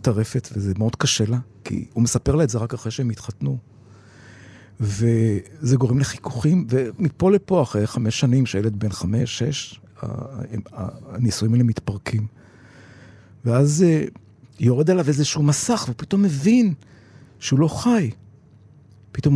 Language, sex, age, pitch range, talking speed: Hebrew, male, 50-69, 110-145 Hz, 125 wpm